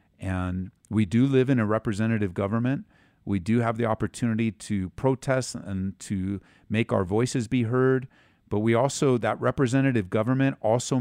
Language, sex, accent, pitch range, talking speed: English, male, American, 105-130 Hz, 160 wpm